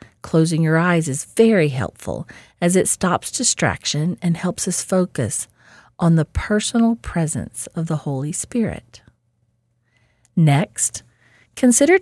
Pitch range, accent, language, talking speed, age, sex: 140-220 Hz, American, English, 120 wpm, 40-59, female